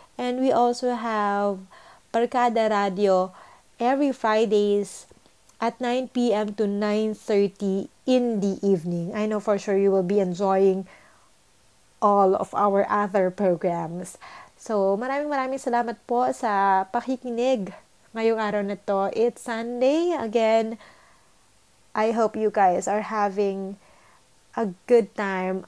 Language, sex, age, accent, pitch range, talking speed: English, female, 20-39, Filipino, 200-240 Hz, 120 wpm